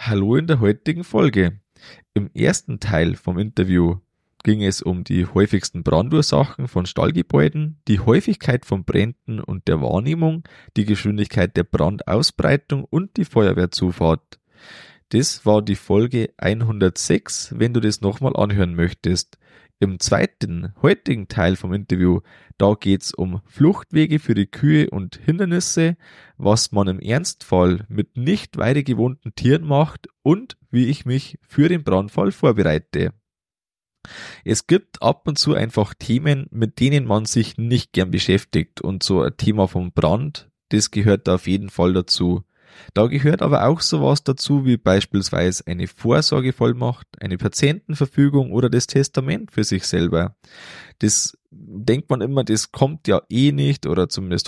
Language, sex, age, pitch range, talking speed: German, male, 20-39, 95-140 Hz, 145 wpm